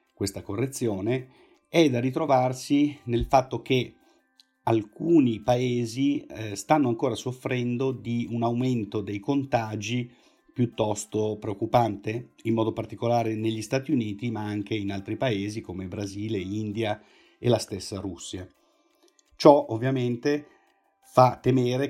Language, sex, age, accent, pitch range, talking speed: Italian, male, 50-69, native, 100-125 Hz, 115 wpm